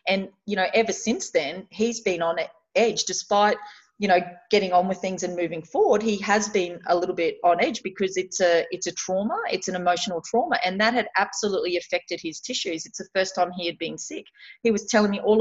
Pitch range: 180-220 Hz